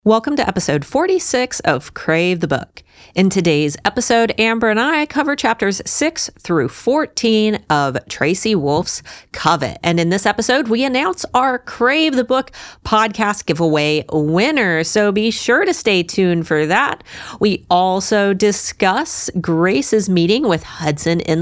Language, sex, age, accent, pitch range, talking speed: English, female, 40-59, American, 150-215 Hz, 145 wpm